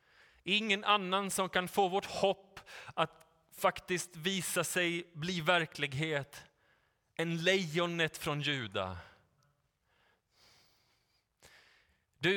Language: Swedish